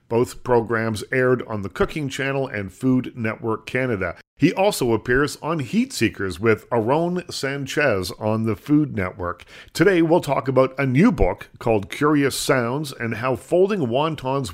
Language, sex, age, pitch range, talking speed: English, male, 50-69, 115-145 Hz, 155 wpm